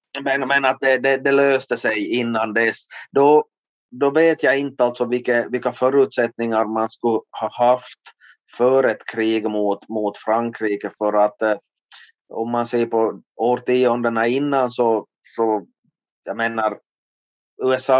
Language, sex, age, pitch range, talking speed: Swedish, male, 30-49, 100-120 Hz, 140 wpm